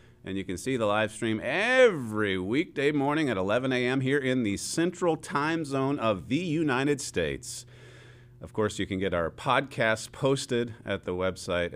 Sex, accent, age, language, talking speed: male, American, 40-59, English, 175 wpm